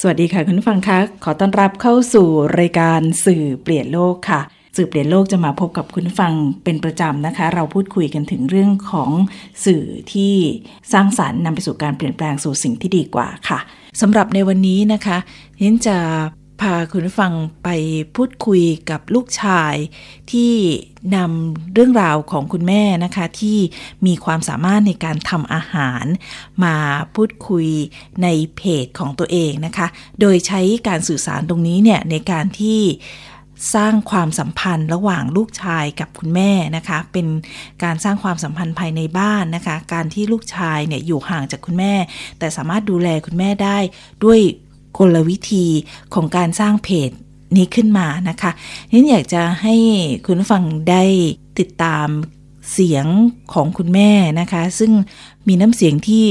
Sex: female